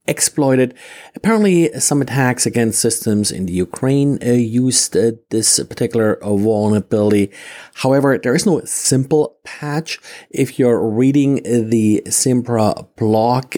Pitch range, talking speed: 105-135 Hz, 130 wpm